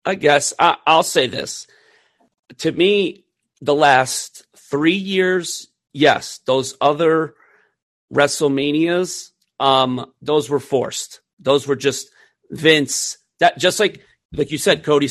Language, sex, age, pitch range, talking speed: English, male, 40-59, 130-155 Hz, 120 wpm